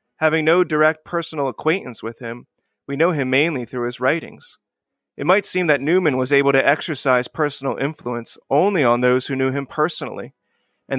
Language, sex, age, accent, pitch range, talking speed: English, male, 30-49, American, 125-155 Hz, 180 wpm